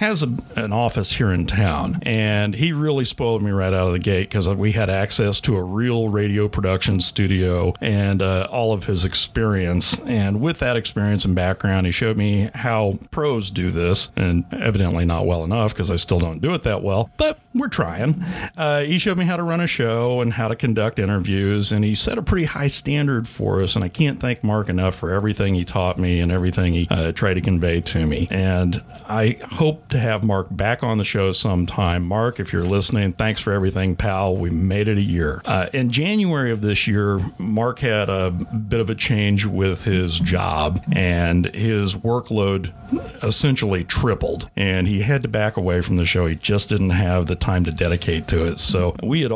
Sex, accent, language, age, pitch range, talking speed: male, American, English, 40-59, 90-115 Hz, 210 wpm